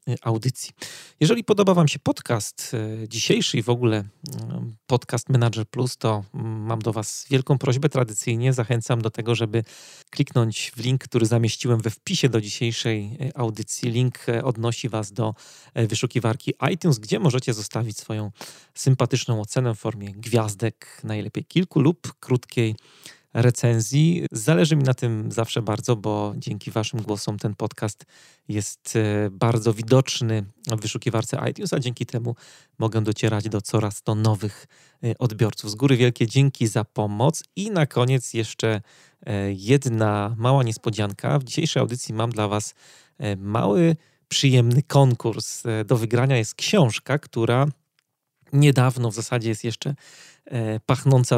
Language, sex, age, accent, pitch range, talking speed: Polish, male, 30-49, native, 110-135 Hz, 135 wpm